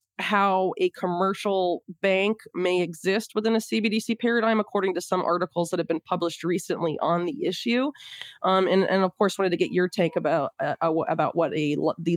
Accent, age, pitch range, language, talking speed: American, 20-39, 165-210 Hz, English, 185 wpm